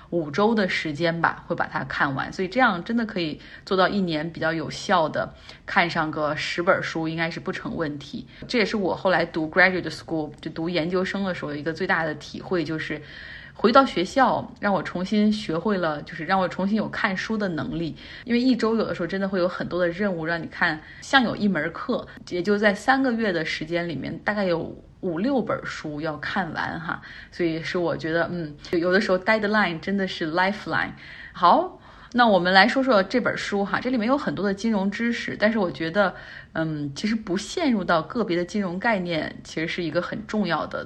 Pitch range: 165-210 Hz